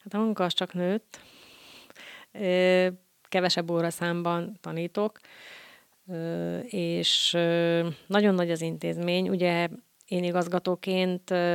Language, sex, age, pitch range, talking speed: Hungarian, female, 30-49, 170-185 Hz, 95 wpm